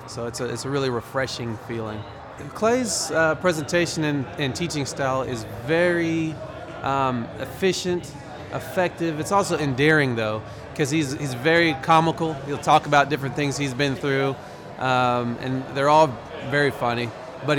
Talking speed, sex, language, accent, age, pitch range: 145 wpm, male, English, American, 30-49, 125-155 Hz